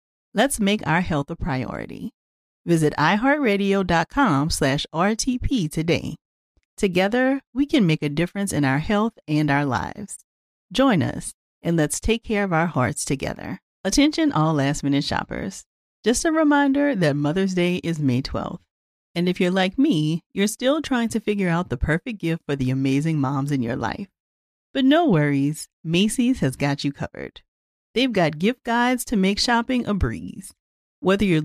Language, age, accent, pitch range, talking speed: English, 40-59, American, 150-240 Hz, 160 wpm